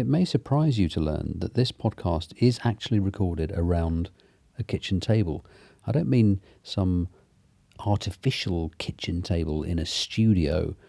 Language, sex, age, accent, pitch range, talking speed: English, male, 40-59, British, 85-105 Hz, 145 wpm